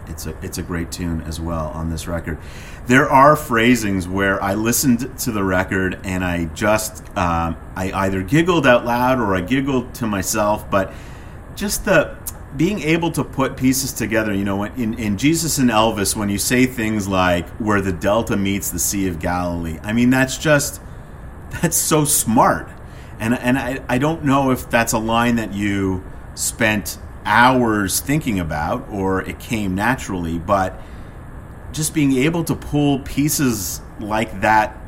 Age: 40-59